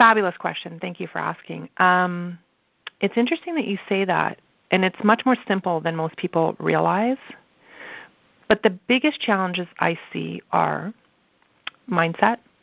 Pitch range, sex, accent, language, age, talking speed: 175-215 Hz, female, American, English, 40-59, 145 wpm